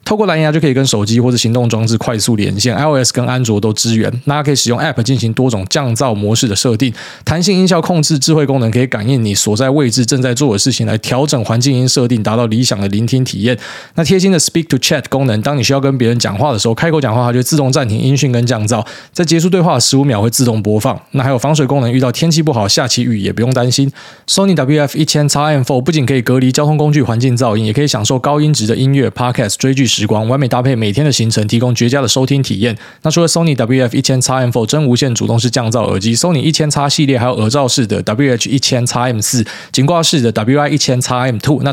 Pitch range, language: 115-145 Hz, Chinese